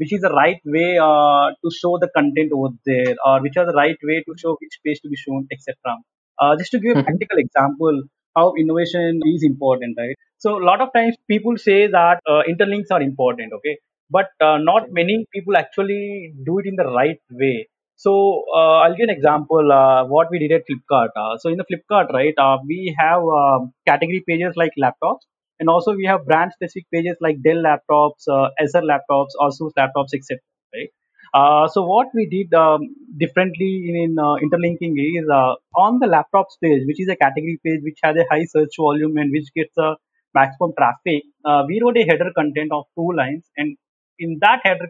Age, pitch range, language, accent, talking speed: 20-39, 145-180 Hz, English, Indian, 205 wpm